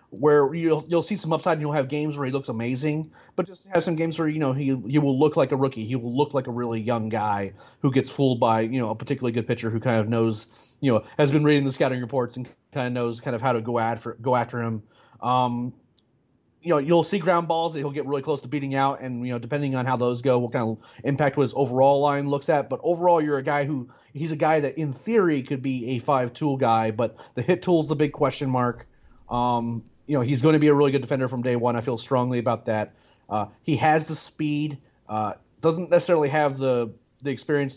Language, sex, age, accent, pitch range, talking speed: English, male, 30-49, American, 120-145 Hz, 255 wpm